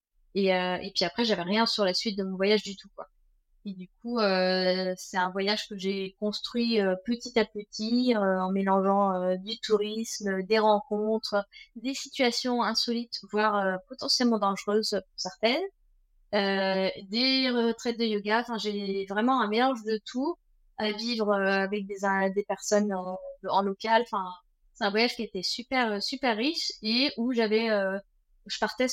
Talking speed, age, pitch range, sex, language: 175 wpm, 20-39, 195-235 Hz, female, French